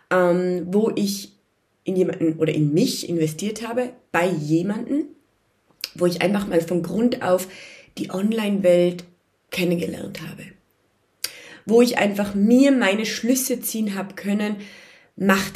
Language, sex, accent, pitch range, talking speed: German, female, German, 170-240 Hz, 125 wpm